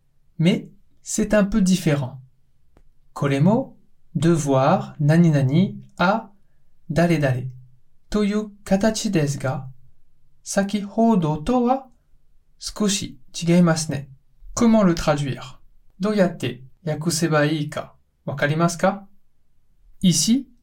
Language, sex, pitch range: Japanese, male, 130-175 Hz